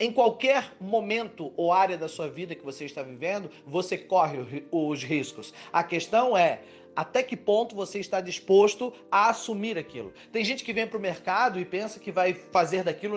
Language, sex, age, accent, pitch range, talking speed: Portuguese, male, 30-49, Brazilian, 165-210 Hz, 185 wpm